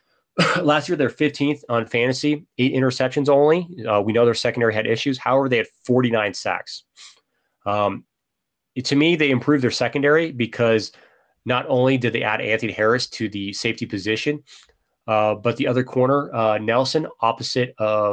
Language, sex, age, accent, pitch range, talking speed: English, male, 30-49, American, 110-135 Hz, 160 wpm